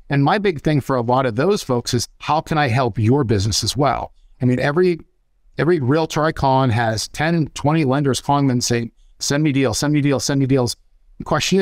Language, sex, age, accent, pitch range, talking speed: English, male, 50-69, American, 125-150 Hz, 230 wpm